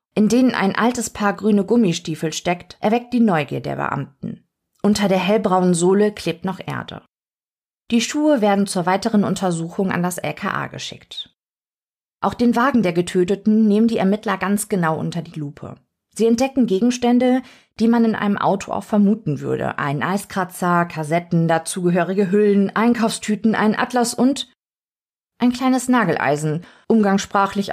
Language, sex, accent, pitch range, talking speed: German, female, German, 175-225 Hz, 145 wpm